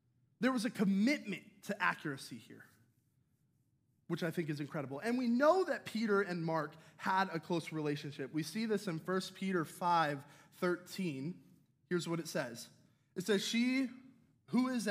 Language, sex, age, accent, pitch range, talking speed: English, male, 20-39, American, 145-190 Hz, 160 wpm